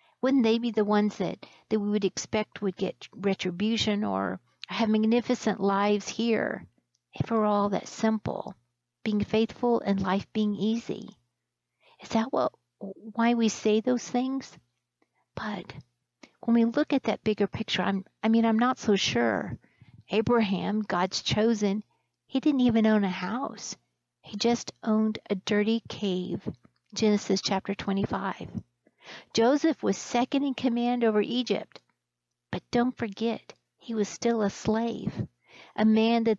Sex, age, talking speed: female, 50-69, 145 wpm